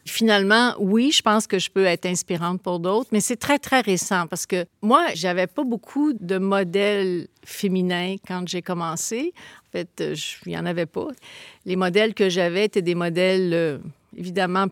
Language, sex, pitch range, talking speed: French, female, 185-230 Hz, 185 wpm